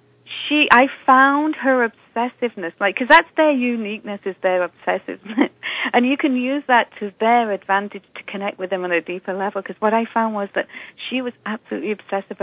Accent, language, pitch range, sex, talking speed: British, English, 185-240 Hz, female, 190 wpm